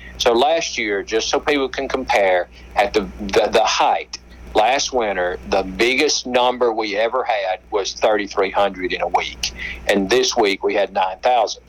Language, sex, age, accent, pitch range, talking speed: English, male, 50-69, American, 85-125 Hz, 165 wpm